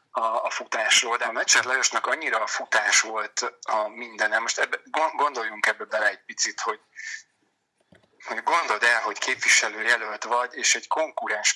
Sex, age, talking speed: male, 30-49, 160 wpm